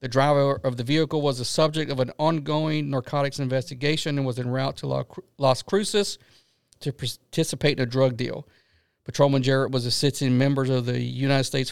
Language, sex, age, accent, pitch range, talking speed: English, male, 50-69, American, 125-140 Hz, 180 wpm